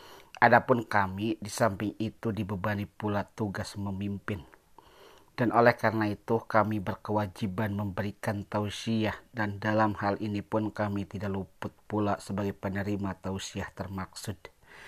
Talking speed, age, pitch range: 120 wpm, 40-59, 100-115 Hz